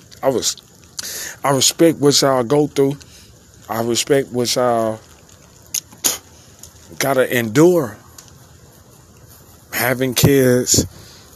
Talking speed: 85 wpm